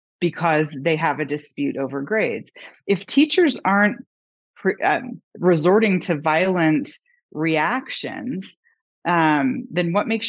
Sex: female